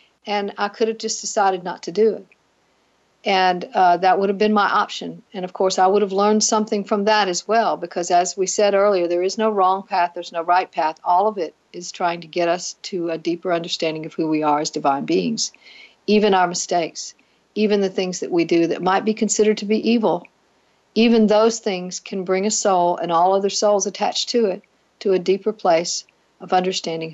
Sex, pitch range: female, 180-220 Hz